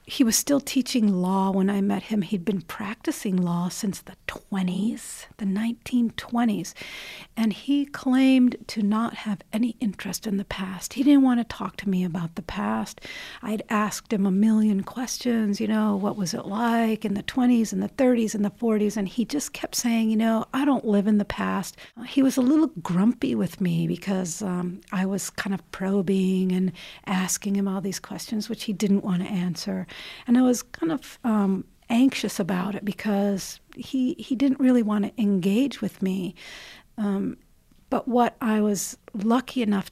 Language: English